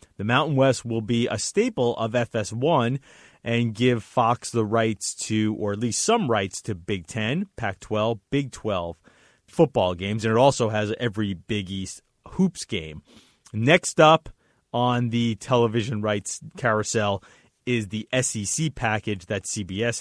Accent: American